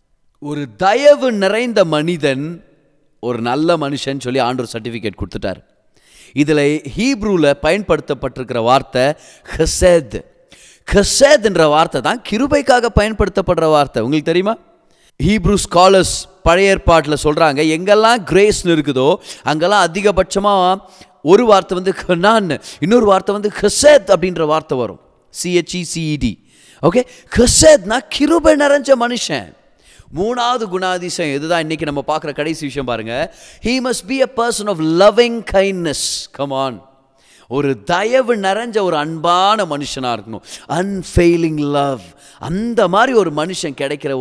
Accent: native